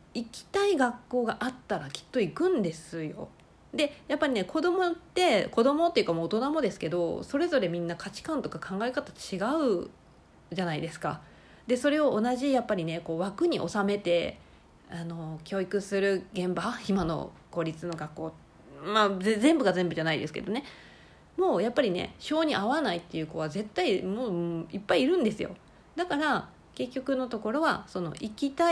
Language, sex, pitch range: Japanese, female, 175-265 Hz